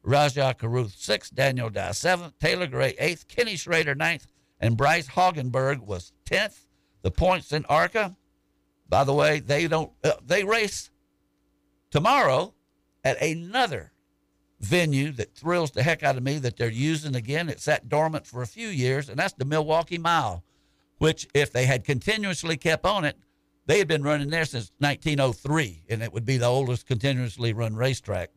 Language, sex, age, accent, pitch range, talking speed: English, male, 60-79, American, 120-165 Hz, 165 wpm